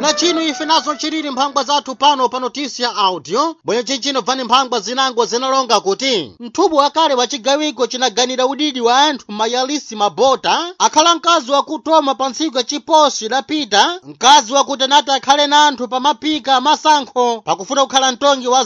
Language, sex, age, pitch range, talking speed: Portuguese, male, 30-49, 250-295 Hz, 150 wpm